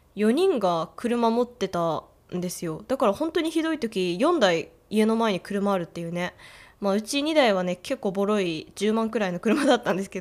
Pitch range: 190-270 Hz